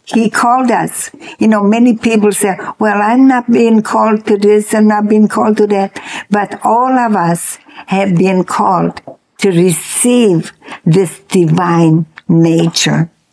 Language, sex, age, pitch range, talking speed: English, female, 60-79, 190-255 Hz, 150 wpm